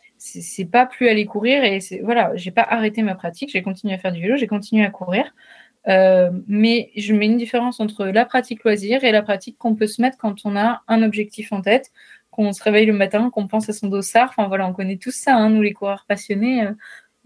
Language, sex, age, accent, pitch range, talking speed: French, female, 20-39, French, 195-235 Hz, 240 wpm